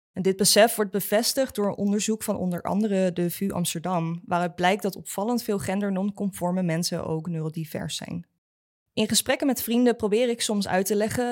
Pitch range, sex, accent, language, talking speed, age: 175-215 Hz, female, Dutch, English, 170 wpm, 20-39